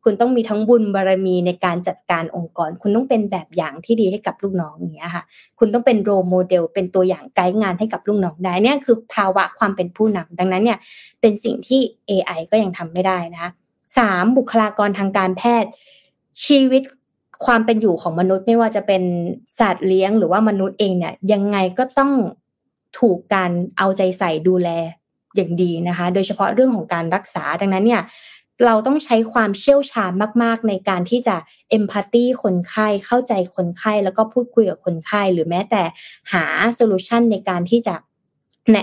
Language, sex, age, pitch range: Thai, female, 20-39, 180-230 Hz